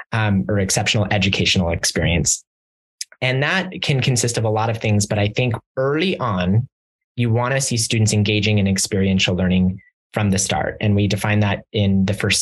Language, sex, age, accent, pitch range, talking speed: English, male, 20-39, American, 100-120 Hz, 185 wpm